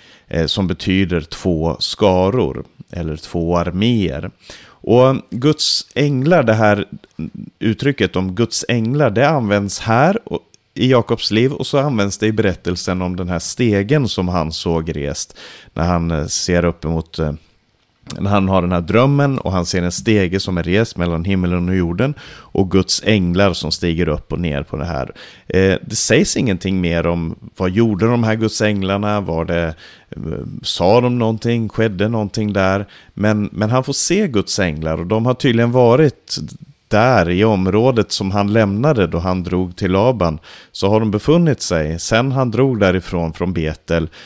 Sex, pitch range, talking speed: male, 85-110 Hz, 165 wpm